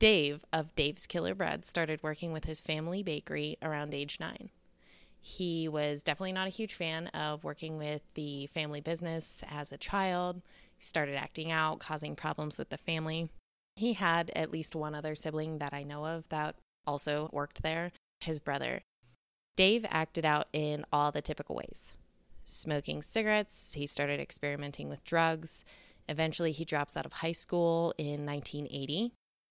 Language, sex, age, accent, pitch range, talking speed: English, female, 20-39, American, 150-175 Hz, 165 wpm